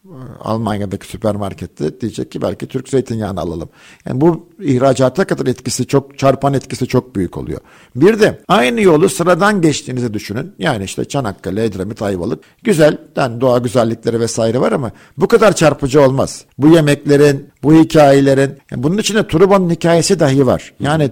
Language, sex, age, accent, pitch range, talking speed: Turkish, male, 50-69, native, 120-150 Hz, 155 wpm